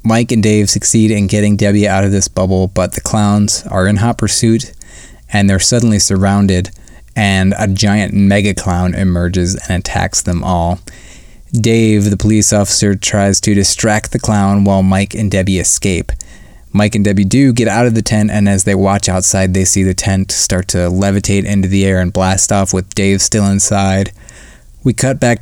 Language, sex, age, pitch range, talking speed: English, male, 20-39, 95-110 Hz, 185 wpm